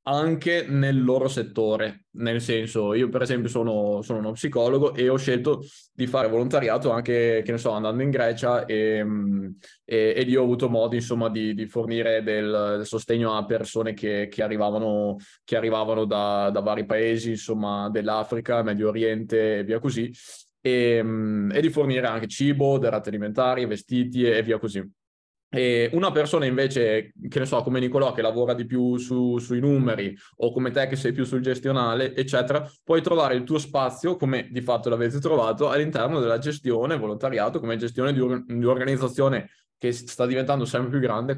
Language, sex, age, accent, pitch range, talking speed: Italian, male, 20-39, native, 110-130 Hz, 170 wpm